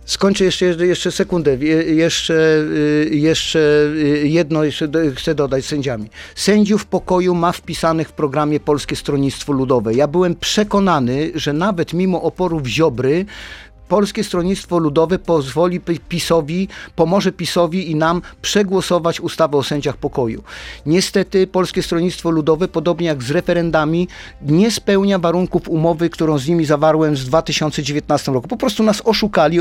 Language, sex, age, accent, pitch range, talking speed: Polish, male, 50-69, native, 155-180 Hz, 135 wpm